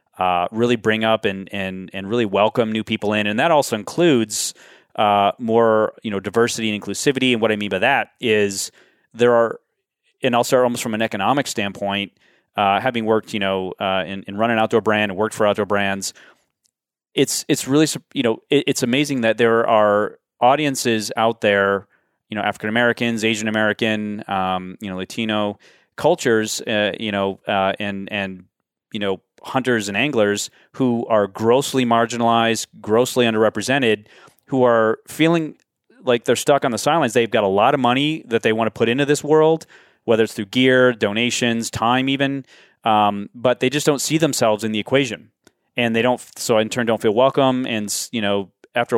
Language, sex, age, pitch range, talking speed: English, male, 30-49, 105-120 Hz, 180 wpm